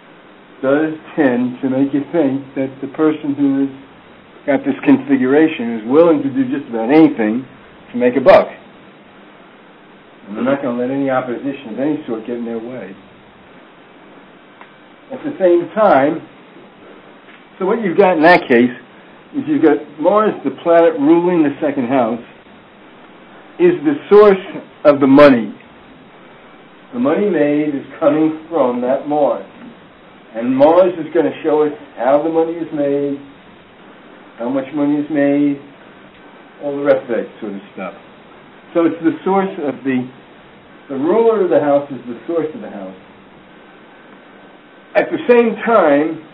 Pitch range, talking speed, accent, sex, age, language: 140-215 Hz, 155 wpm, American, male, 60-79, English